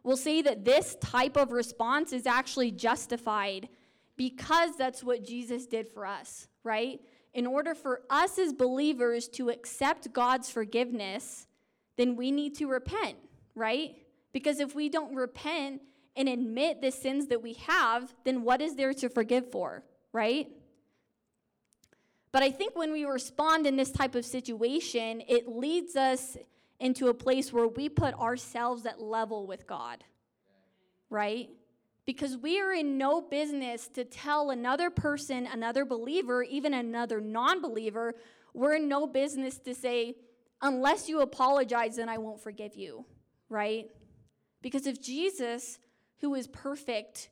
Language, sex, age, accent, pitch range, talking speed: English, female, 20-39, American, 235-280 Hz, 150 wpm